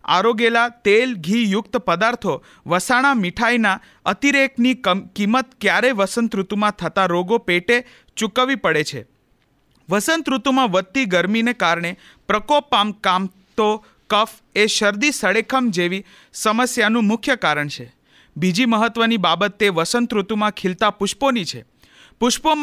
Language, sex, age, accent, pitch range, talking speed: Hindi, male, 40-59, native, 185-240 Hz, 115 wpm